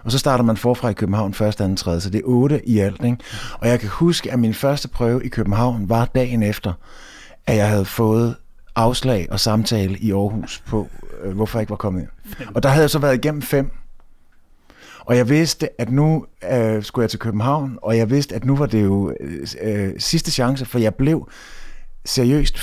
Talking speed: 210 wpm